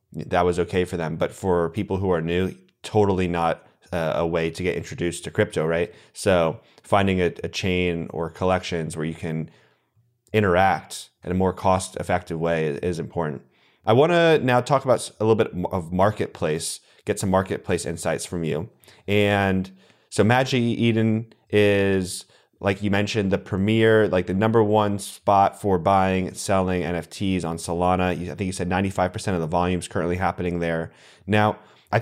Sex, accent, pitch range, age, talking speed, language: male, American, 90-110 Hz, 30-49, 175 wpm, English